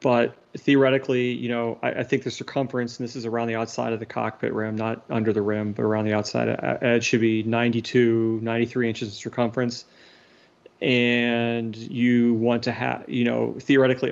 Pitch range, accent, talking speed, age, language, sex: 115-125 Hz, American, 185 wpm, 30-49, English, male